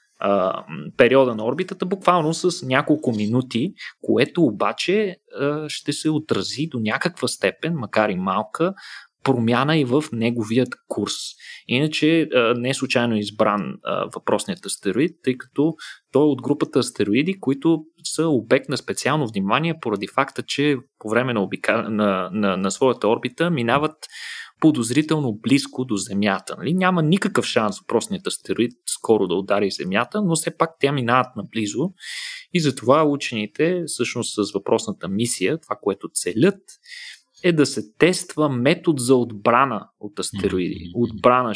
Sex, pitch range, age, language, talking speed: male, 115-165 Hz, 30-49, Bulgarian, 140 wpm